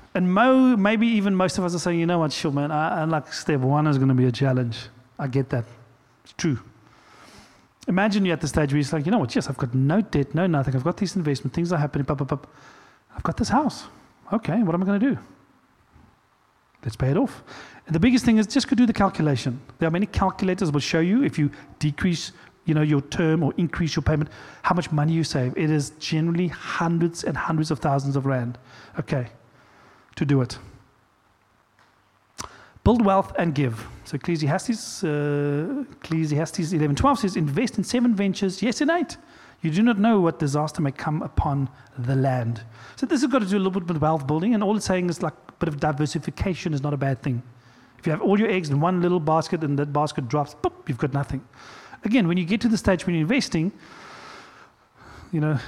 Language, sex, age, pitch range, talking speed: English, male, 40-59, 140-185 Hz, 220 wpm